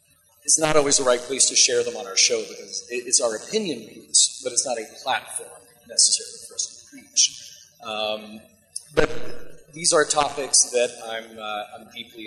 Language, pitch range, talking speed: English, 120-200 Hz, 180 wpm